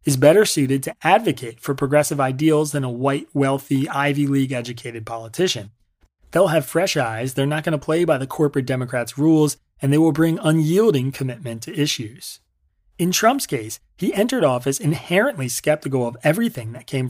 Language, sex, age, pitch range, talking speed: English, male, 30-49, 130-160 Hz, 170 wpm